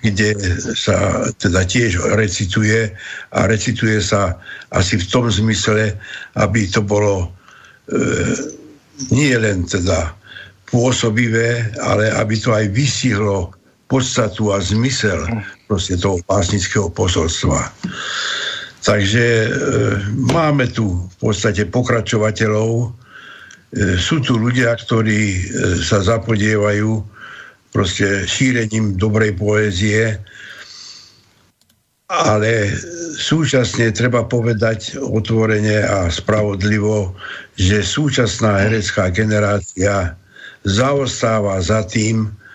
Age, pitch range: 60-79, 100-115 Hz